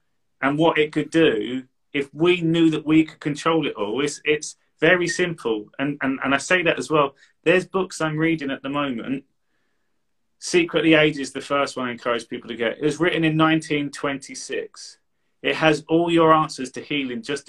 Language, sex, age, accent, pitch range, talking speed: English, male, 30-49, British, 135-160 Hz, 195 wpm